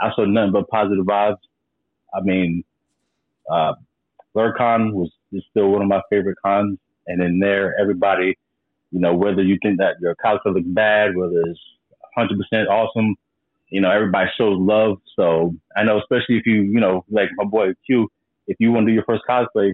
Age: 30-49